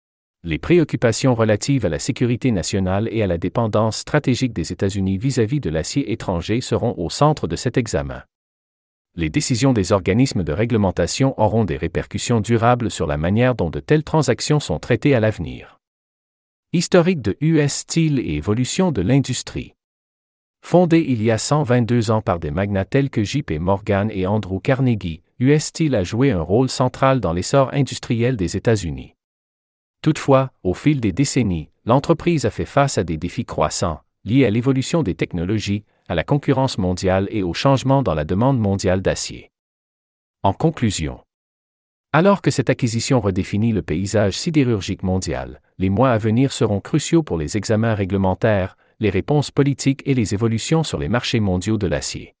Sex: male